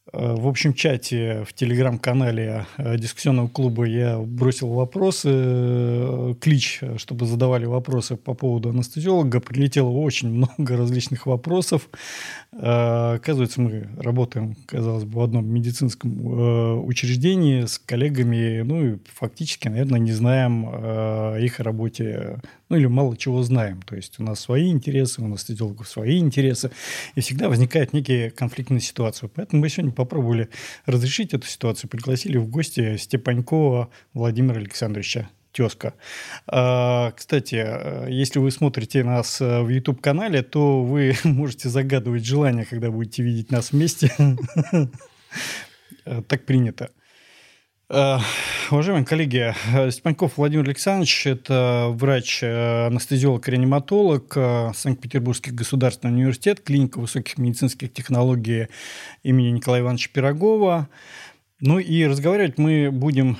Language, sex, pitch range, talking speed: Russian, male, 120-140 Hz, 115 wpm